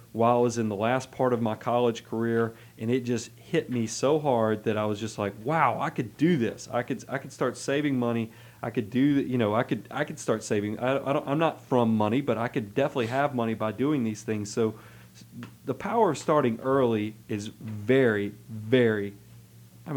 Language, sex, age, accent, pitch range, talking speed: English, male, 30-49, American, 115-145 Hz, 220 wpm